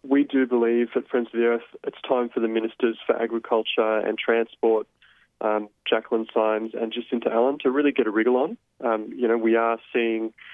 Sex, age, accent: male, 20-39, Australian